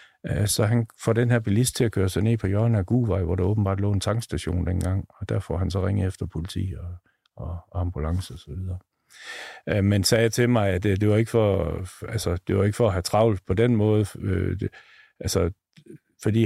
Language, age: Danish, 50-69